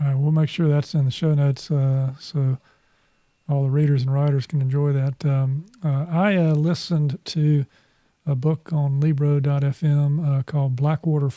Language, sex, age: English, male, 40-59